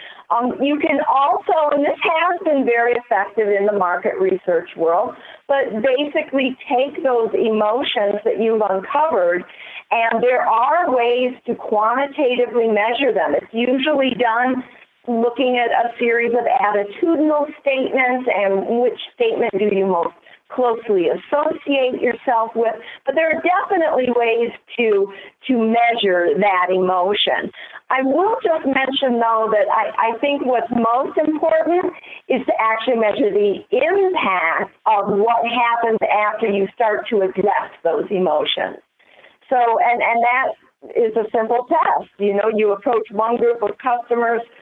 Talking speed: 140 wpm